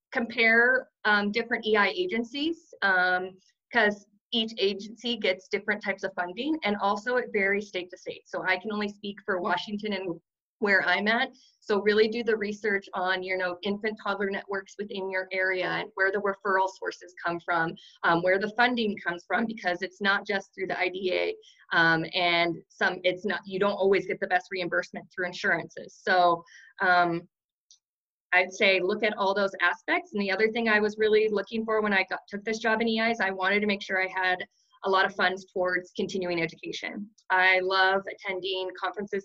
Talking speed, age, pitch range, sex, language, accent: 190 wpm, 20-39, 180-215 Hz, female, English, American